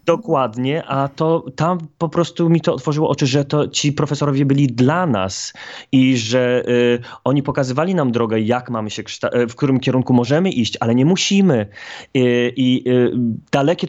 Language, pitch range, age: Polish, 120-150 Hz, 20-39